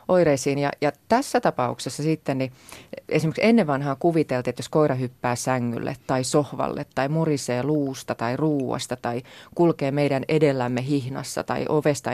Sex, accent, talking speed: female, native, 150 wpm